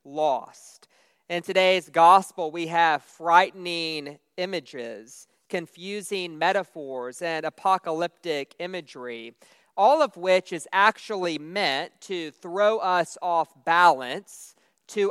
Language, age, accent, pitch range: English, 40-59, American, 155-195 Hz